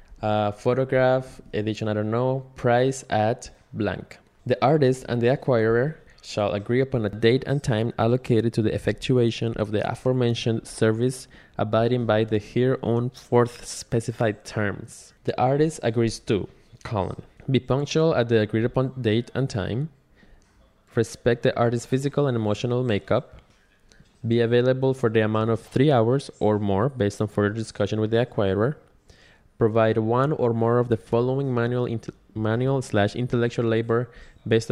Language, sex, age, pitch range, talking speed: English, male, 20-39, 110-125 Hz, 155 wpm